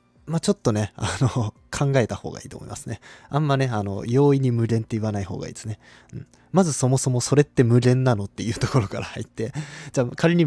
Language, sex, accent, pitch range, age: Japanese, male, native, 105-155 Hz, 20-39